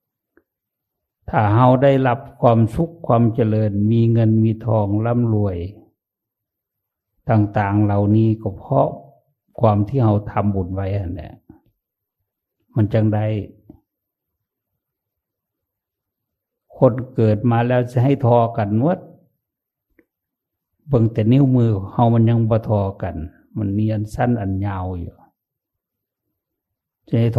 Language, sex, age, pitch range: English, male, 60-79, 100-120 Hz